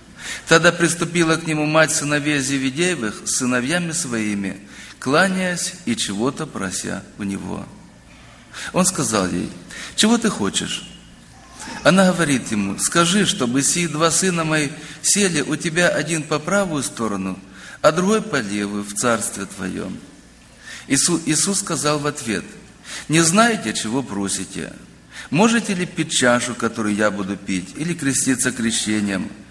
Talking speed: 130 wpm